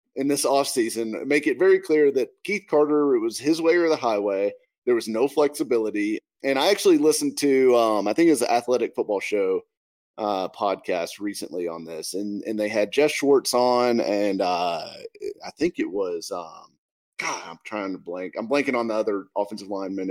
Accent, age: American, 30-49